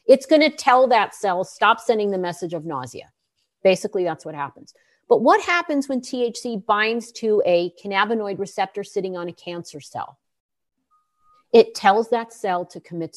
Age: 50-69